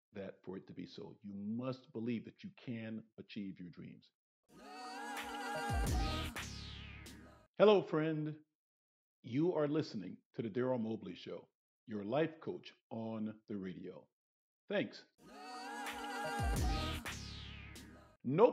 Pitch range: 115-160 Hz